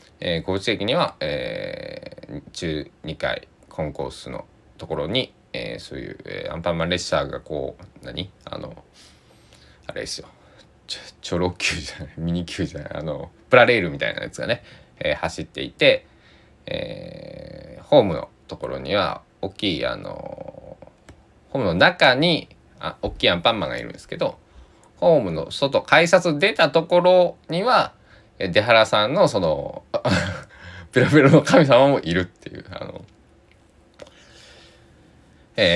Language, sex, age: Japanese, male, 20-39